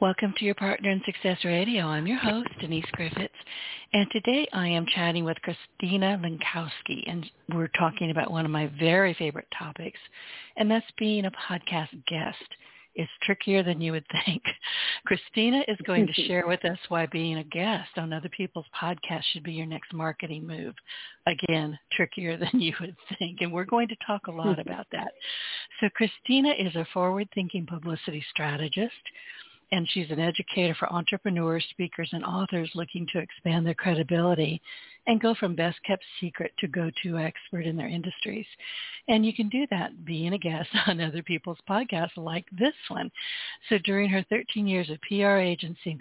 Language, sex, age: English, female, 60-79